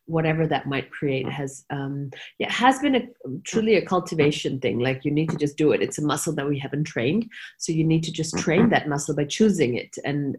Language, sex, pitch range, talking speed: English, female, 140-175 Hz, 230 wpm